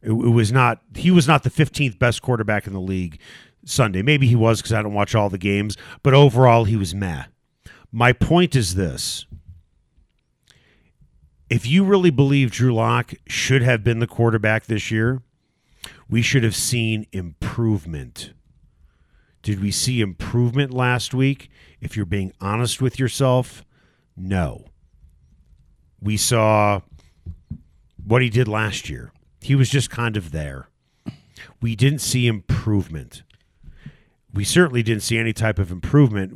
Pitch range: 90-120 Hz